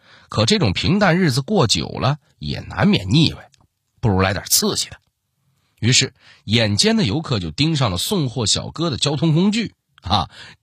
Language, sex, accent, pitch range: Chinese, male, native, 95-145 Hz